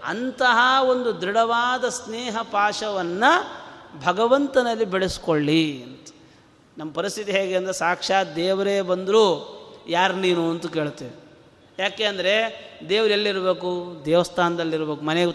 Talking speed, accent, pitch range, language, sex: 100 wpm, native, 180-230 Hz, Kannada, male